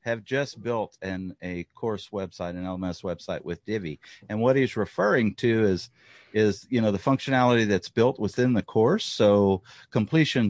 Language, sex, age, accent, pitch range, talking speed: English, male, 50-69, American, 95-120 Hz, 170 wpm